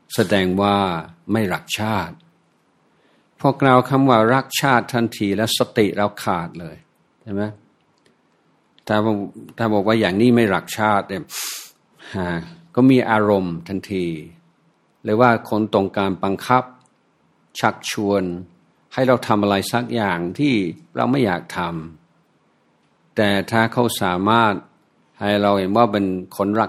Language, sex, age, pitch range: Thai, male, 60-79, 95-115 Hz